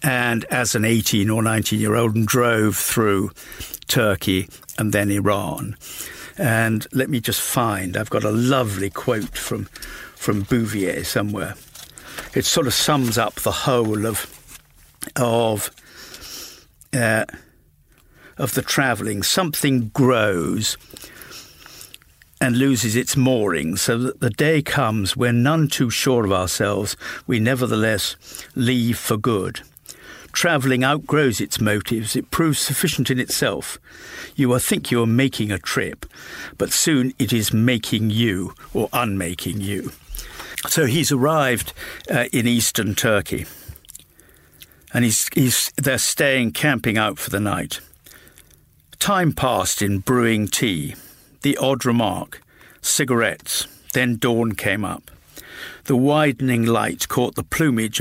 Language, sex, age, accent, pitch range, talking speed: English, male, 60-79, British, 105-130 Hz, 130 wpm